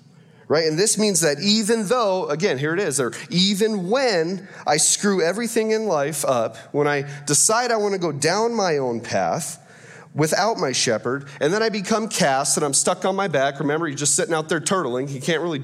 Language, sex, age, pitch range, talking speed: English, male, 30-49, 130-185 Hz, 210 wpm